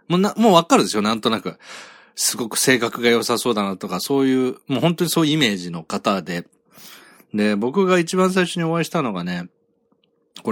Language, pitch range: Japanese, 110-170 Hz